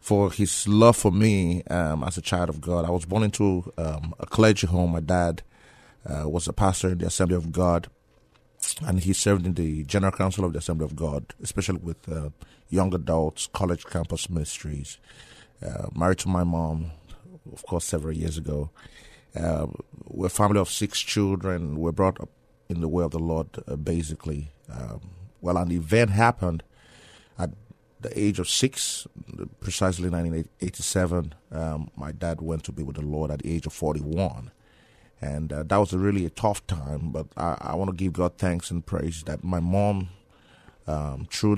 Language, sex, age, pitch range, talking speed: English, male, 30-49, 80-95 Hz, 185 wpm